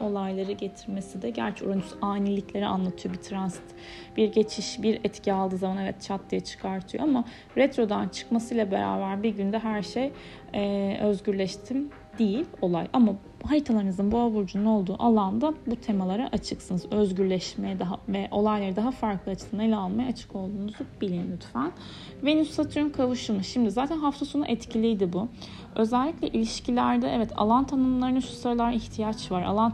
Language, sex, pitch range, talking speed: Turkish, female, 195-245 Hz, 145 wpm